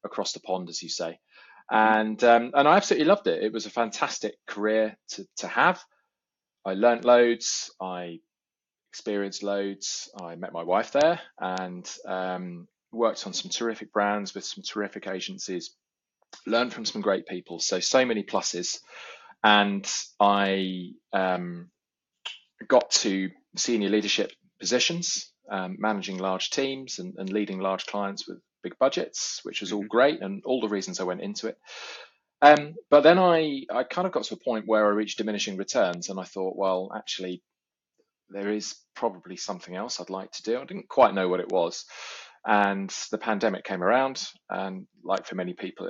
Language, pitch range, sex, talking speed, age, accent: English, 95-110 Hz, male, 170 wpm, 30-49, British